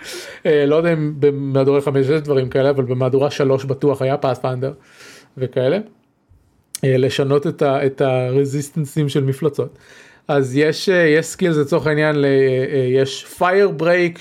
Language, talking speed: Hebrew, 120 wpm